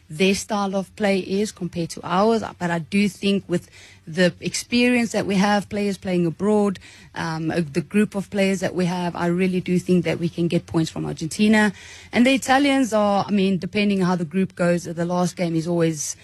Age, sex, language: 30-49, female, English